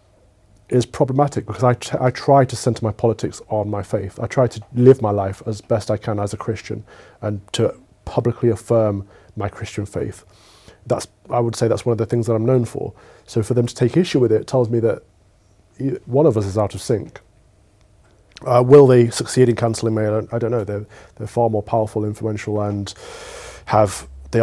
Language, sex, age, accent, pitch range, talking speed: English, male, 30-49, British, 105-125 Hz, 205 wpm